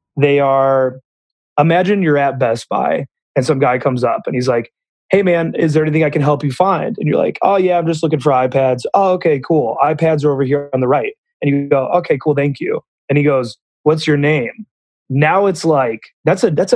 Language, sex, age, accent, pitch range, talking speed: English, male, 30-49, American, 130-155 Hz, 230 wpm